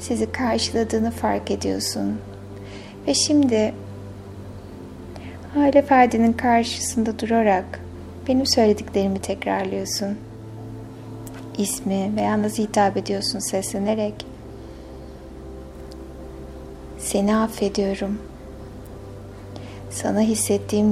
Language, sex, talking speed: Turkish, female, 65 wpm